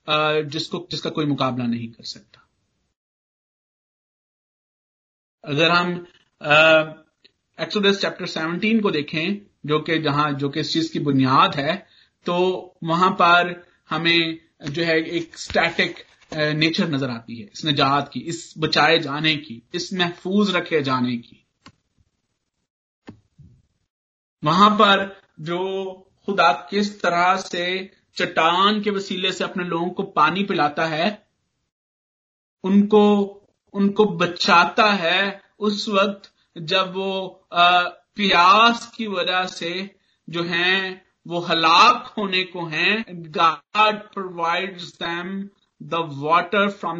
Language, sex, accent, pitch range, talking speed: Hindi, male, native, 160-195 Hz, 115 wpm